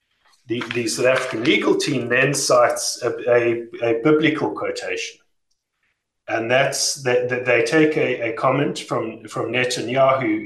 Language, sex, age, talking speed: English, male, 40-59, 130 wpm